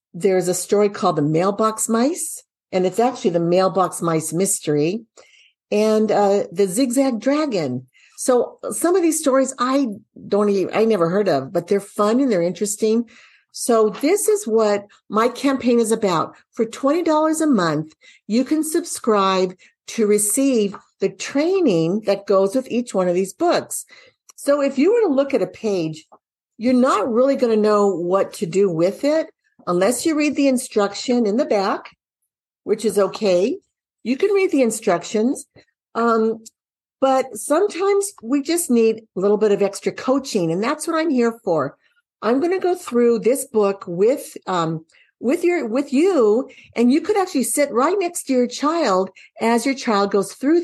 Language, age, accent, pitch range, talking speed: English, 50-69, American, 200-275 Hz, 175 wpm